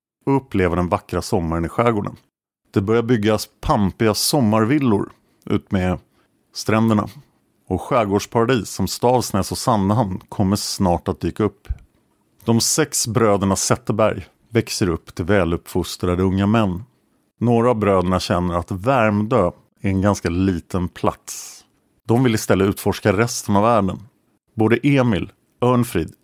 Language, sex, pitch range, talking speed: Swedish, male, 95-115 Hz, 130 wpm